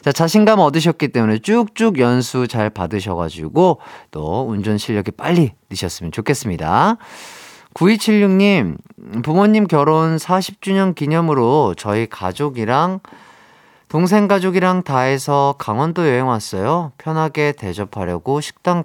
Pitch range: 110-160 Hz